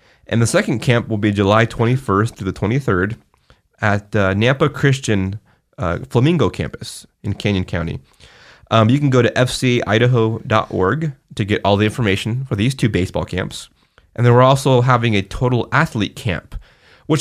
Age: 20-39